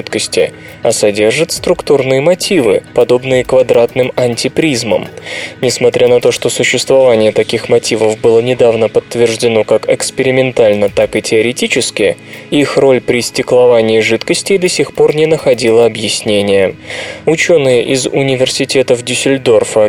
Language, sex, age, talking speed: Russian, male, 20-39, 110 wpm